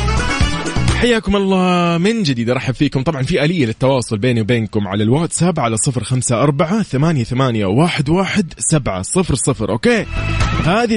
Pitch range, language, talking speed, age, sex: 115-160 Hz, English, 95 wpm, 20-39, male